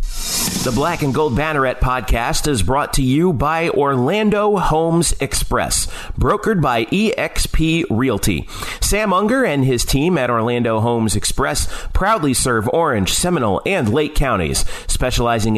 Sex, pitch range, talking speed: male, 115-165 Hz, 135 wpm